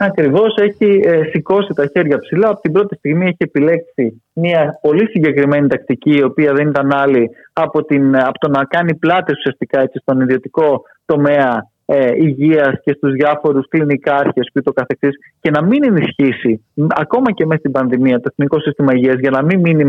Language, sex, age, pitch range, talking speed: Greek, male, 20-39, 135-180 Hz, 165 wpm